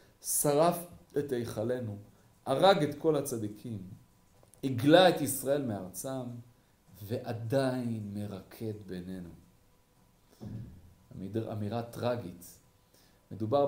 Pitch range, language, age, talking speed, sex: 110-150 Hz, Hebrew, 40-59, 75 wpm, male